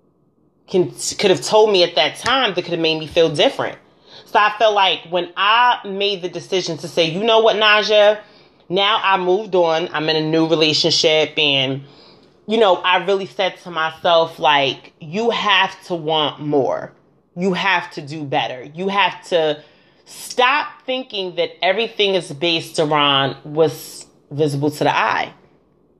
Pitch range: 165-225 Hz